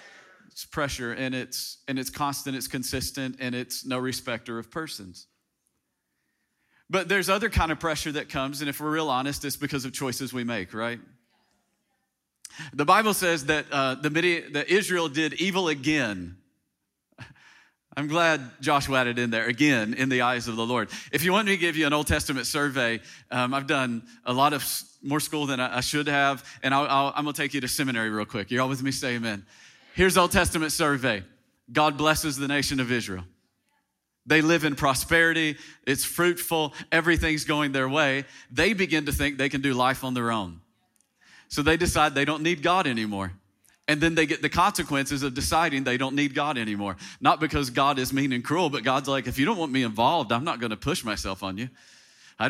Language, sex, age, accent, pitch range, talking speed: English, male, 40-59, American, 125-155 Hz, 205 wpm